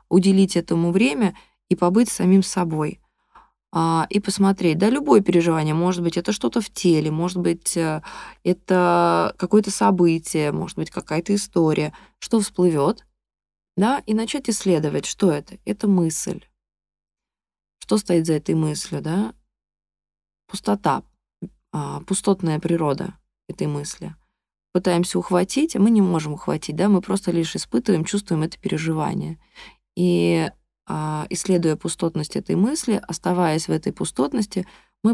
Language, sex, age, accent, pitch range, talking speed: Russian, female, 20-39, native, 160-200 Hz, 125 wpm